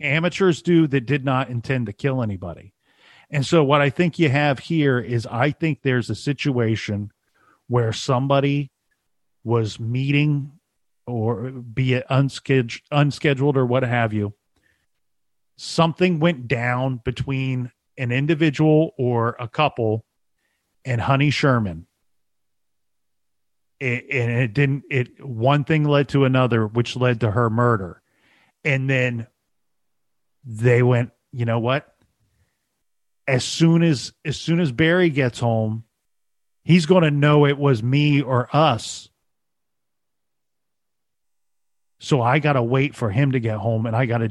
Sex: male